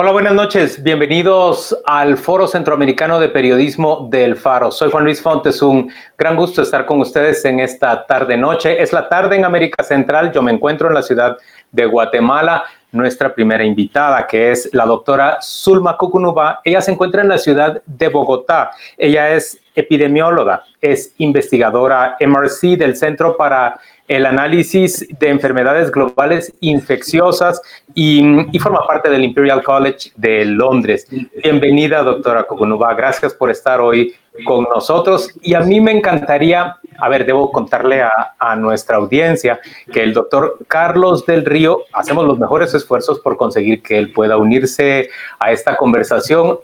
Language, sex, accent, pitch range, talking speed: Spanish, male, Mexican, 130-170 Hz, 155 wpm